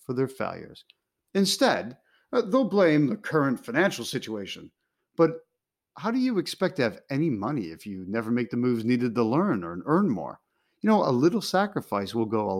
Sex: male